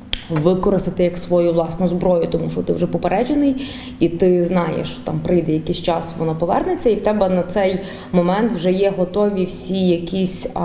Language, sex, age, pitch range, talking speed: Ukrainian, female, 20-39, 165-195 Hz, 175 wpm